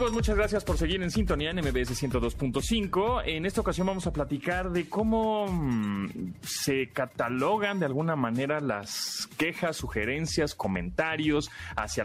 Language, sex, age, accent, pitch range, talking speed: Spanish, male, 30-49, Mexican, 120-180 Hz, 140 wpm